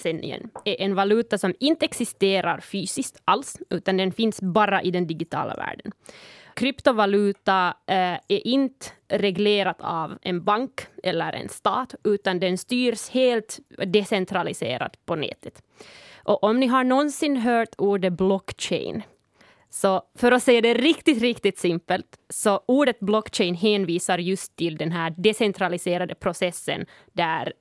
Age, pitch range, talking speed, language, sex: 20-39, 185-225 Hz, 135 wpm, Swedish, female